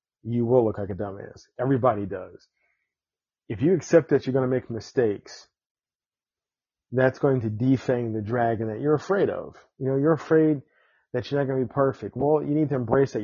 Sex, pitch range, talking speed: male, 115-135 Hz, 200 wpm